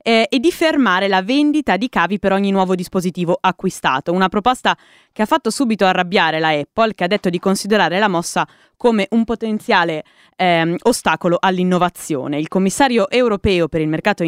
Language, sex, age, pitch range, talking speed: Italian, female, 20-39, 170-225 Hz, 170 wpm